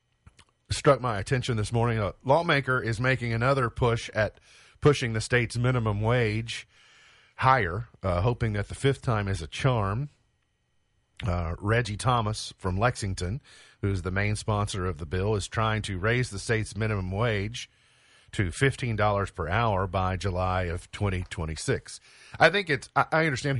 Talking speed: 155 wpm